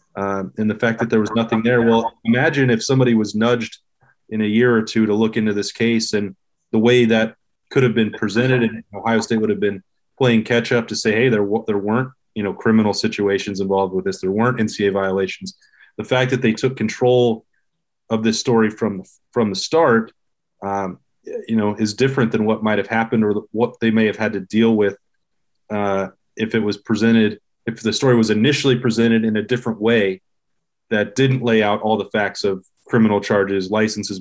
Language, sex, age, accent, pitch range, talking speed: English, male, 30-49, American, 105-115 Hz, 205 wpm